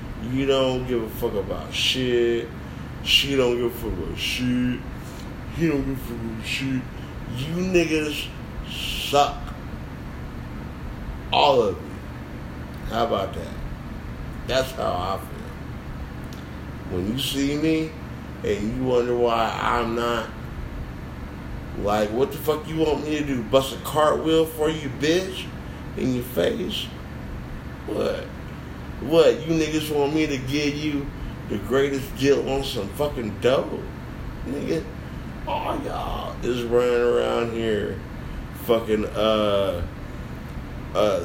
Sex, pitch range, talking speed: male, 85-135 Hz, 130 wpm